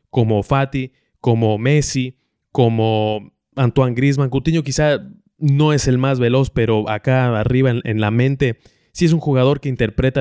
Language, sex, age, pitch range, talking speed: English, male, 20-39, 115-135 Hz, 160 wpm